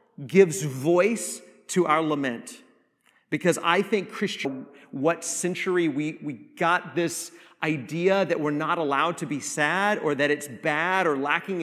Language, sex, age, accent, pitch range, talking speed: English, male, 40-59, American, 170-210 Hz, 150 wpm